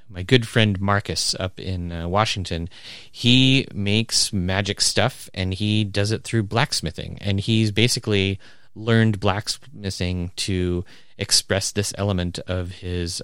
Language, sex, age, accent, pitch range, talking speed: English, male, 30-49, American, 90-110 Hz, 130 wpm